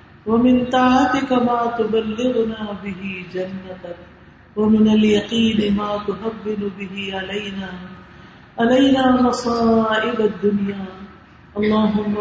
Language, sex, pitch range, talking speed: Urdu, female, 200-235 Hz, 80 wpm